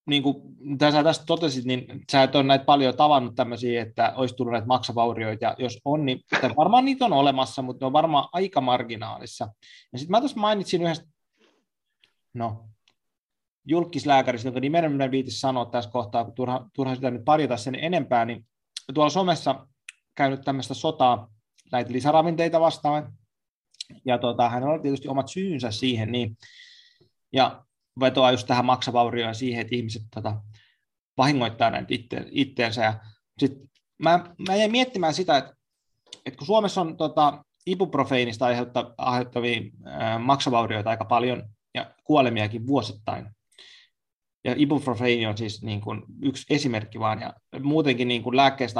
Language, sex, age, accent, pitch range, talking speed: Finnish, male, 20-39, native, 120-150 Hz, 140 wpm